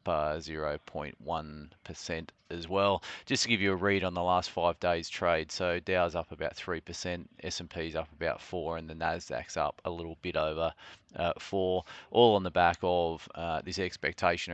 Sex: male